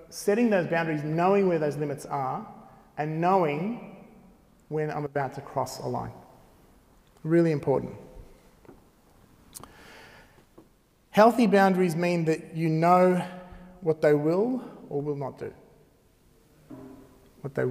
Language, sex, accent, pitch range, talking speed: English, male, Australian, 135-175 Hz, 115 wpm